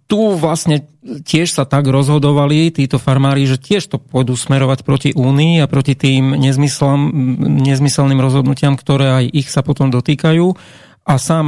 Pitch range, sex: 135-160 Hz, male